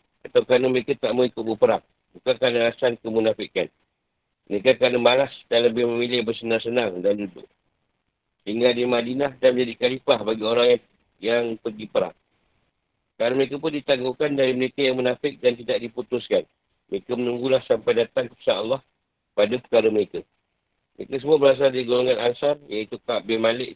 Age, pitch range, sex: 50-69, 120-145 Hz, male